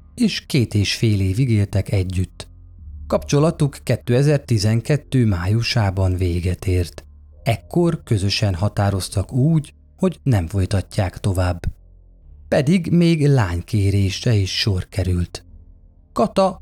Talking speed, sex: 100 wpm, male